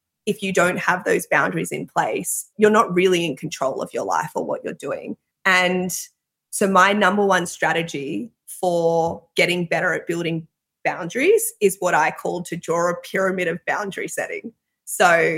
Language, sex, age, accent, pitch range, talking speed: English, female, 20-39, Australian, 165-200 Hz, 170 wpm